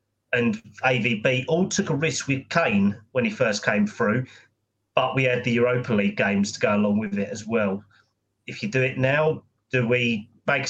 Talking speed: 195 wpm